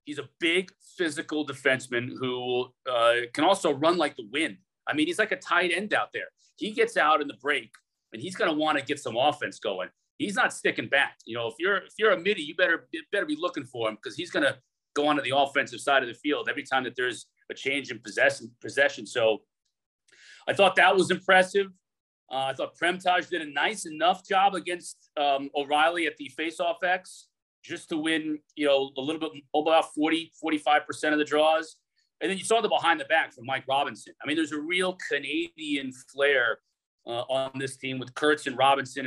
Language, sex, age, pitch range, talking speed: English, male, 40-59, 135-185 Hz, 215 wpm